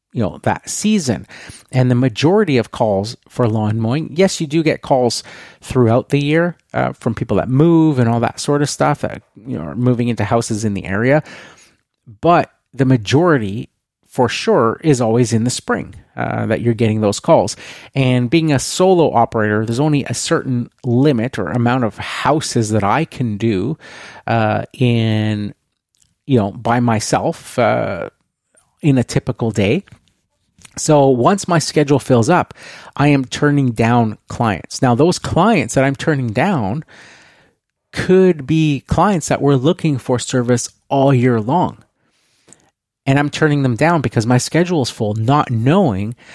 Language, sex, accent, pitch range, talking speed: English, male, American, 115-145 Hz, 165 wpm